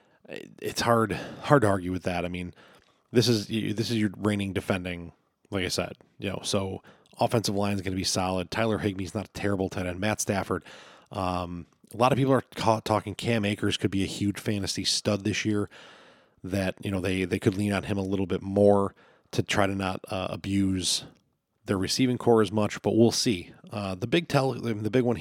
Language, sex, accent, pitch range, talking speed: English, male, American, 95-110 Hz, 215 wpm